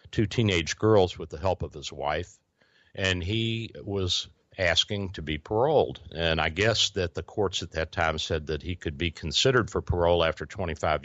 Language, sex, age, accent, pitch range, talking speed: English, male, 60-79, American, 80-105 Hz, 190 wpm